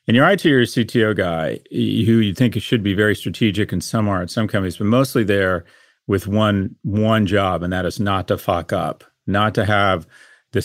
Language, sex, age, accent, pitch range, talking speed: English, male, 40-59, American, 95-110 Hz, 220 wpm